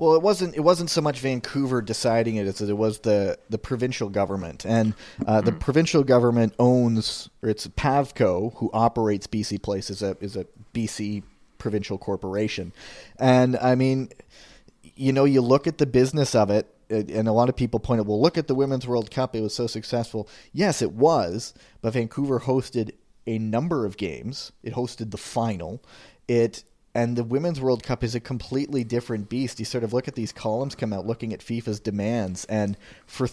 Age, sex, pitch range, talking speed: 30-49, male, 105-125 Hz, 195 wpm